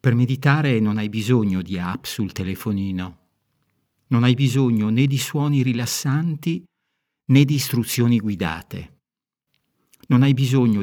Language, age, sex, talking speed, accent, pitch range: Italian, 50-69, male, 125 wpm, native, 105-135 Hz